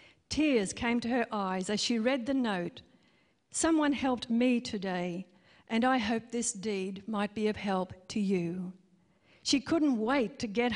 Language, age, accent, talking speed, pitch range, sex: English, 50-69, Australian, 165 wpm, 200-245 Hz, female